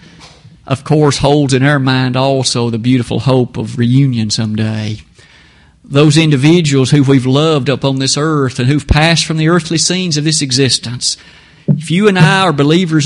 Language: English